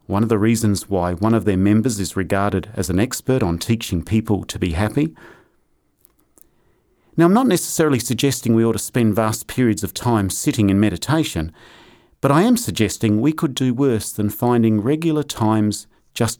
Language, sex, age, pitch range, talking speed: English, male, 40-59, 100-130 Hz, 180 wpm